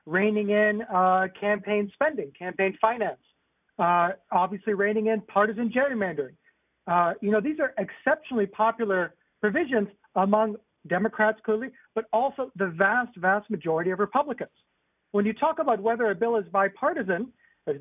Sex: male